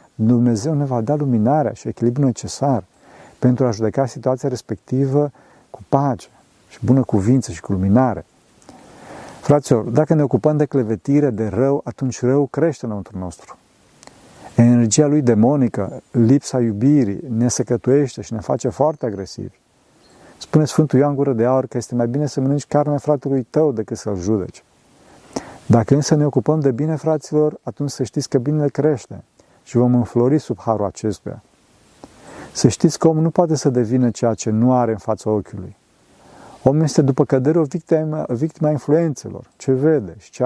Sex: male